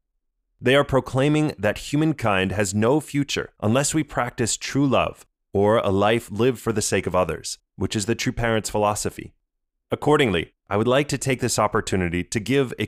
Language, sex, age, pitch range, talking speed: English, male, 30-49, 95-120 Hz, 180 wpm